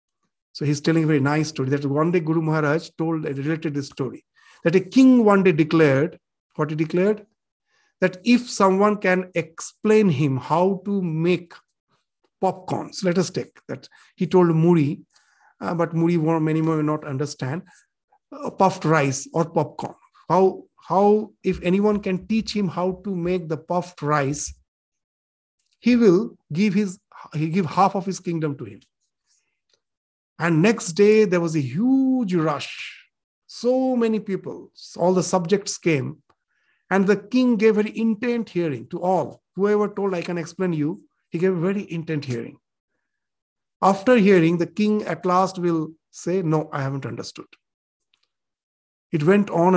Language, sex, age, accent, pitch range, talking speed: English, male, 50-69, Indian, 160-200 Hz, 160 wpm